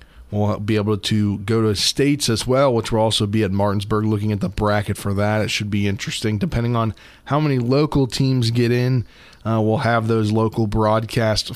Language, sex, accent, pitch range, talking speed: English, male, American, 105-120 Hz, 200 wpm